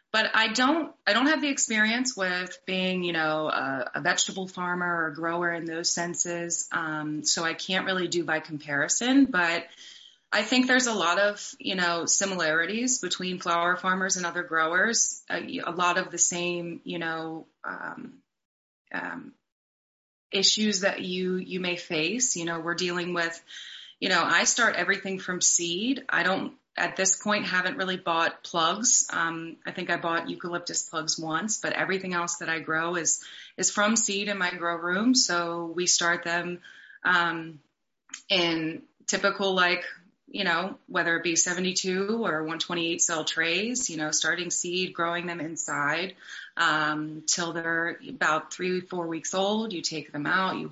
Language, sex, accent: English, female, American